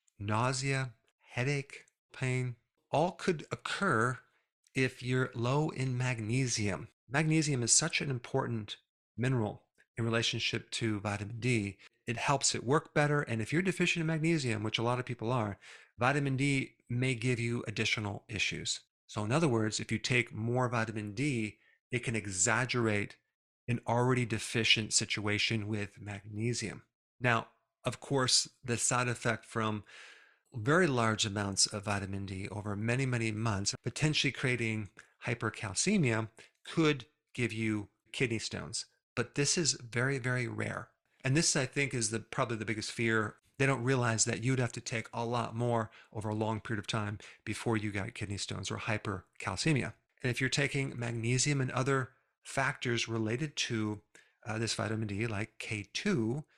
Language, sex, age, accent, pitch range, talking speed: English, male, 40-59, American, 110-130 Hz, 155 wpm